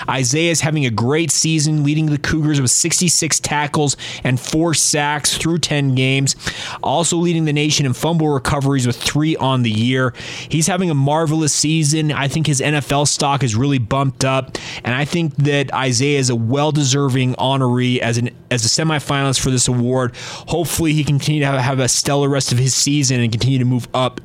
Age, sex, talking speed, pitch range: 20-39, male, 190 wpm, 130-155 Hz